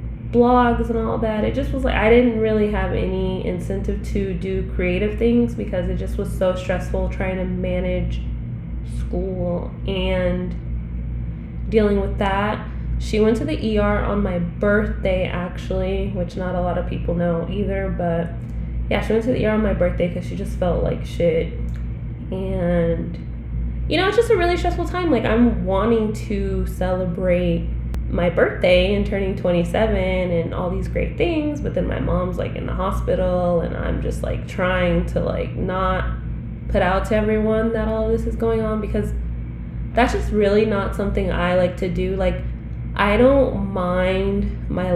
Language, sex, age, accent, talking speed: English, female, 10-29, American, 175 wpm